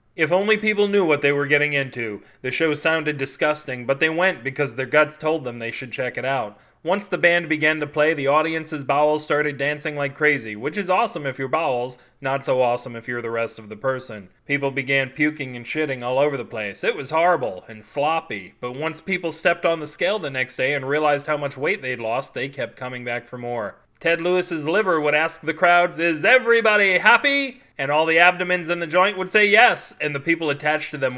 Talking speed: 225 wpm